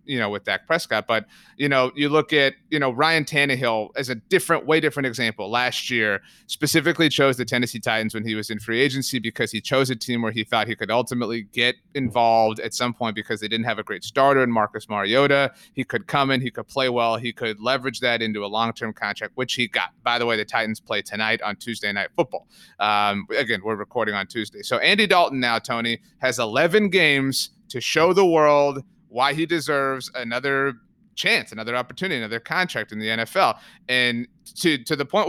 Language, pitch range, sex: English, 115-165 Hz, male